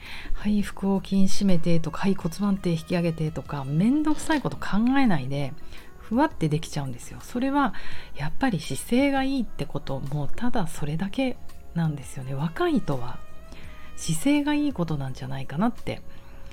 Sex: female